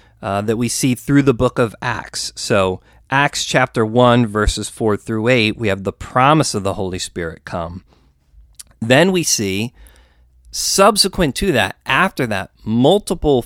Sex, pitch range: male, 100-130 Hz